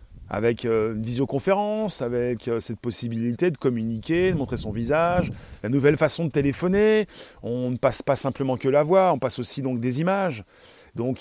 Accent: French